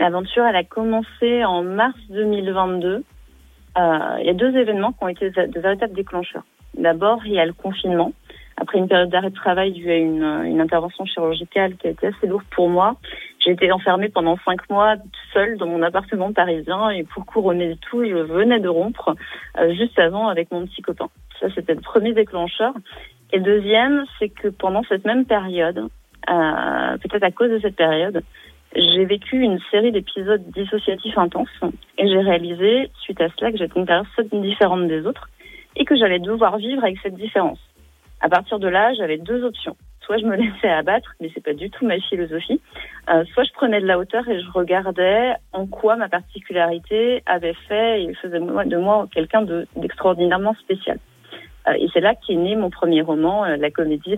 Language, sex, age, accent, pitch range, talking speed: French, female, 30-49, French, 175-215 Hz, 195 wpm